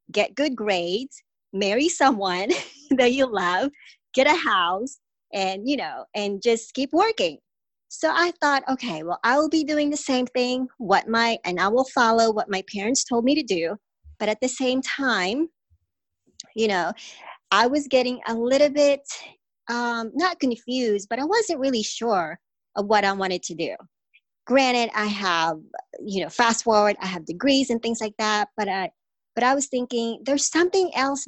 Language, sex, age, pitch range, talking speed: English, male, 40-59, 195-270 Hz, 180 wpm